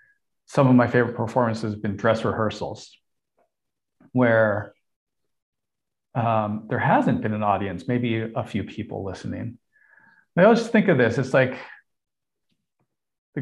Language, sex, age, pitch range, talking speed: English, male, 40-59, 110-135 Hz, 135 wpm